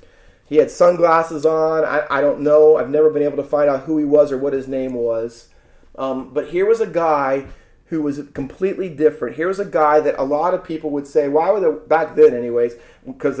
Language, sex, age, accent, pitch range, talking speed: English, male, 30-49, American, 140-185 Hz, 230 wpm